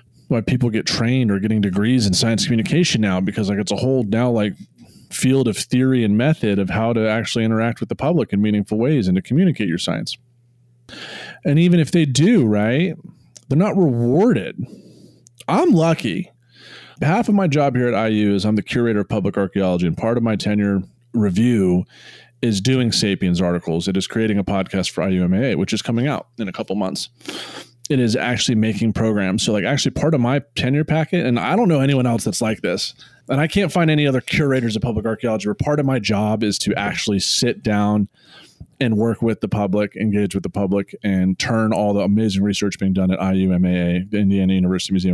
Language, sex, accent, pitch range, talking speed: English, male, American, 100-130 Hz, 205 wpm